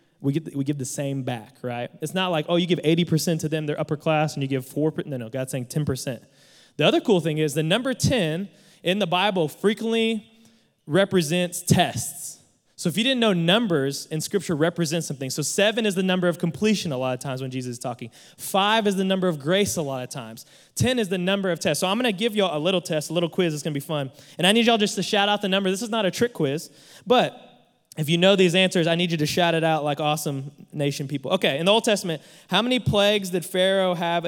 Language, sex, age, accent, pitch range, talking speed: English, male, 20-39, American, 150-195 Hz, 250 wpm